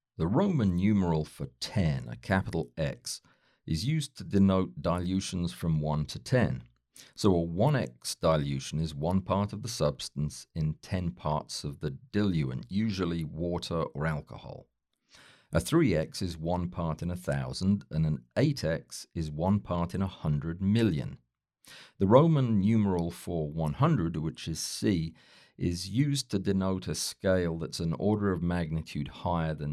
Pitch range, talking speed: 75-100 Hz, 155 wpm